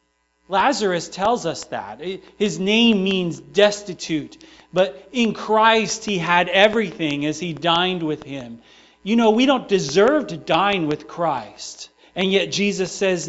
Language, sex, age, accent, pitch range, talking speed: English, male, 40-59, American, 185-225 Hz, 145 wpm